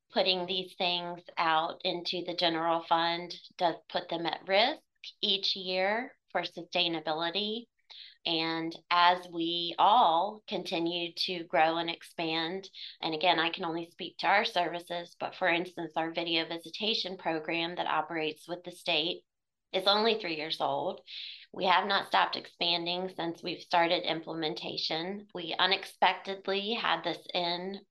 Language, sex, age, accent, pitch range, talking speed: English, female, 30-49, American, 165-185 Hz, 140 wpm